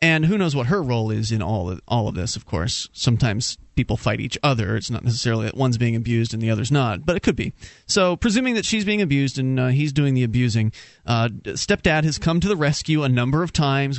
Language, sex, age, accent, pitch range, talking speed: English, male, 30-49, American, 125-175 Hz, 245 wpm